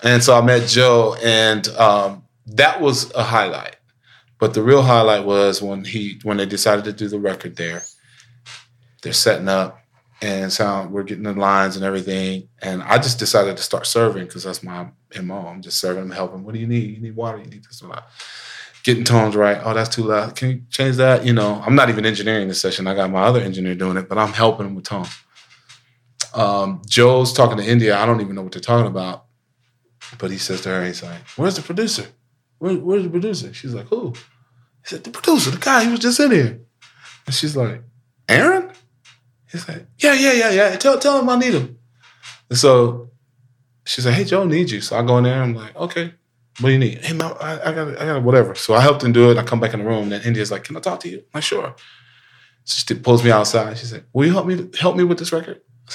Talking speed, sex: 240 wpm, male